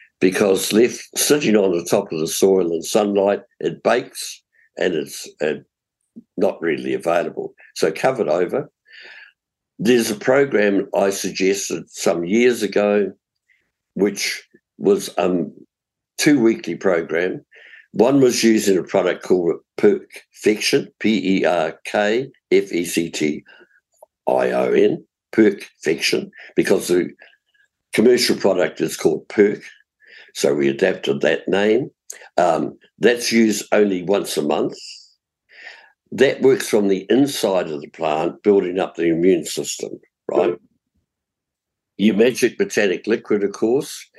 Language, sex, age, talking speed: English, male, 60-79, 115 wpm